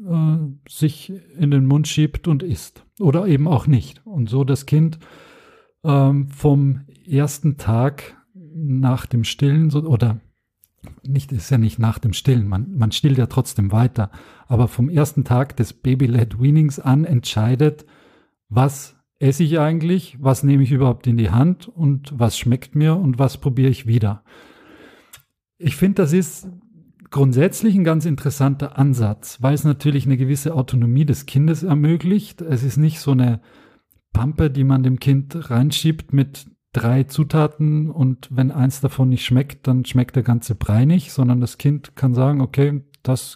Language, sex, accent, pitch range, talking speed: German, male, German, 125-150 Hz, 160 wpm